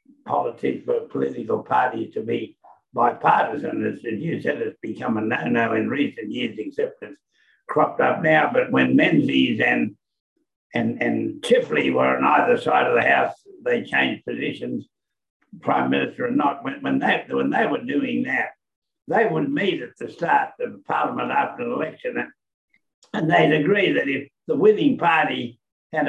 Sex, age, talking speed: male, 60-79, 165 wpm